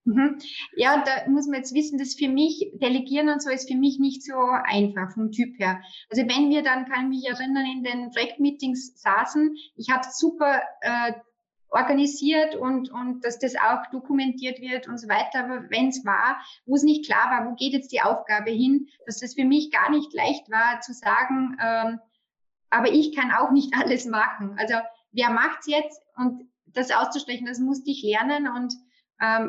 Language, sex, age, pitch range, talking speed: German, female, 20-39, 225-275 Hz, 195 wpm